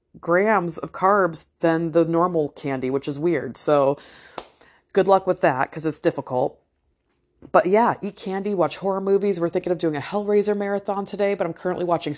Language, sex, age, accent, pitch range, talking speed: English, female, 30-49, American, 145-180 Hz, 180 wpm